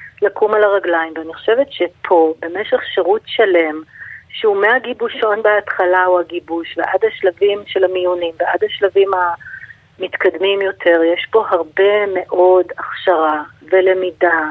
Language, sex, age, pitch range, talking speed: Hebrew, female, 30-49, 170-210 Hz, 115 wpm